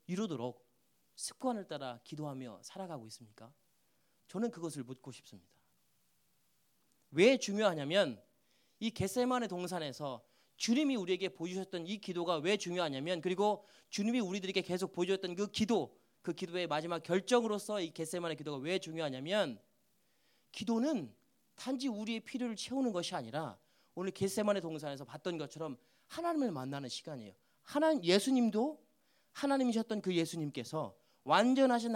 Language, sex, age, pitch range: Korean, male, 30-49, 140-215 Hz